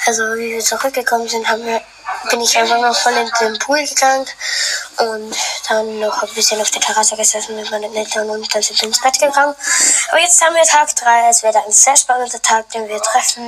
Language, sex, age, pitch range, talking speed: German, female, 10-29, 235-305 Hz, 220 wpm